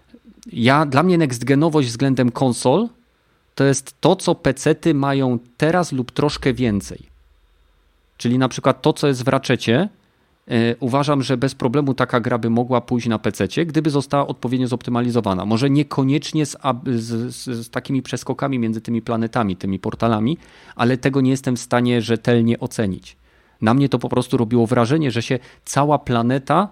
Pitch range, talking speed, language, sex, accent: 115-135 Hz, 160 wpm, Polish, male, native